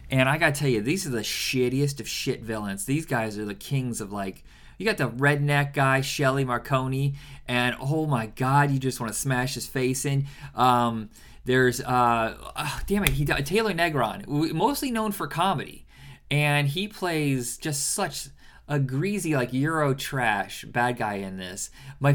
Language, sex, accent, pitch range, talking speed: English, male, American, 125-160 Hz, 180 wpm